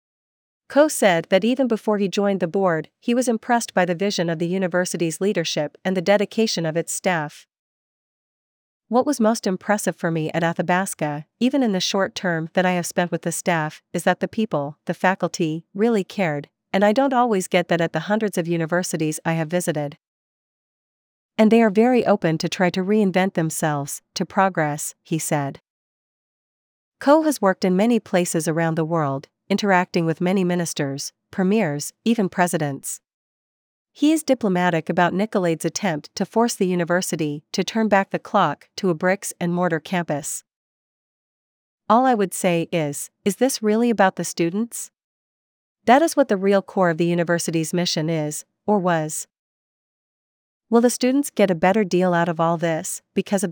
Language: English